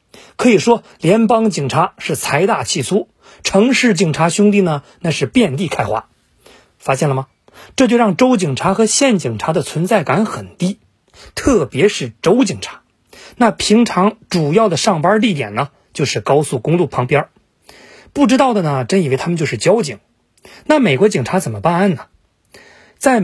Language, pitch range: Chinese, 160-220 Hz